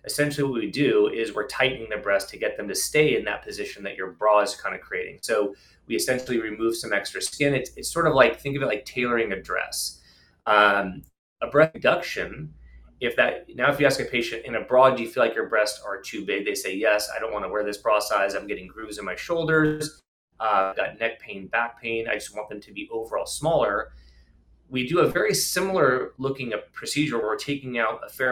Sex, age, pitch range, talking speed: male, 30-49, 105-135 Hz, 235 wpm